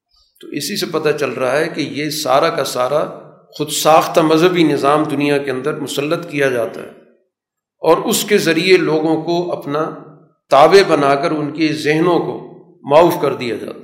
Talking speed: 180 wpm